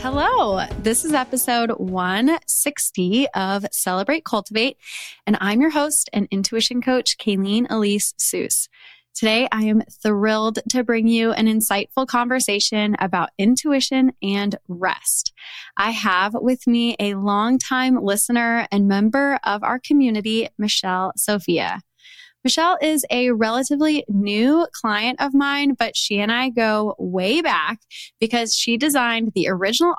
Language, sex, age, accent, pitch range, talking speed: English, female, 20-39, American, 200-255 Hz, 130 wpm